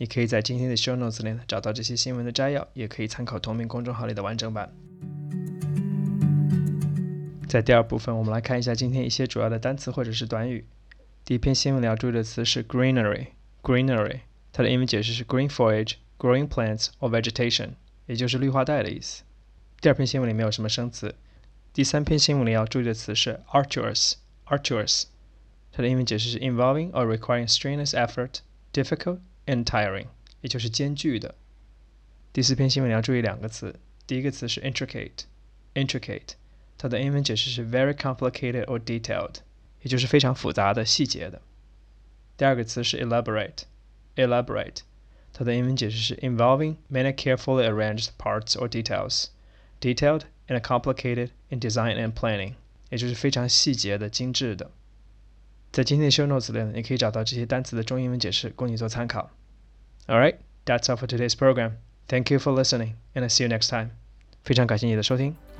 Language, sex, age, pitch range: Chinese, male, 20-39, 115-130 Hz